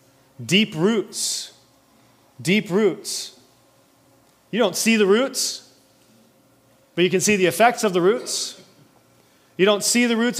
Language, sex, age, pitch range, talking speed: English, male, 30-49, 165-215 Hz, 135 wpm